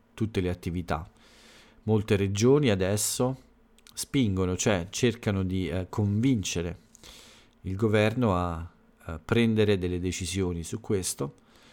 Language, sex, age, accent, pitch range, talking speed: Italian, male, 40-59, native, 90-110 Hz, 105 wpm